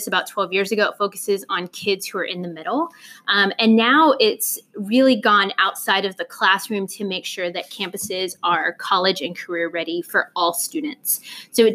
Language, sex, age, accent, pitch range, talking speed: English, female, 20-39, American, 175-210 Hz, 195 wpm